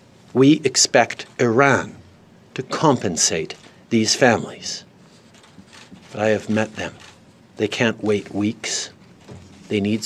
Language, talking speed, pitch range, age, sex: Persian, 105 wpm, 110-135 Hz, 50-69, male